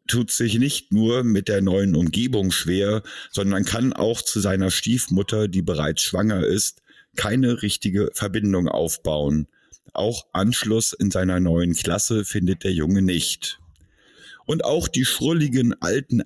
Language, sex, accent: German, male, German